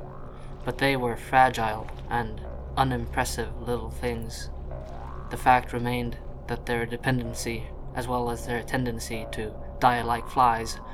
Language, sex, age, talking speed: English, male, 20-39, 125 wpm